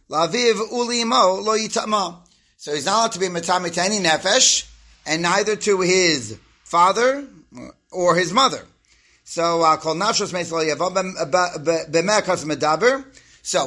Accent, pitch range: American, 155-195 Hz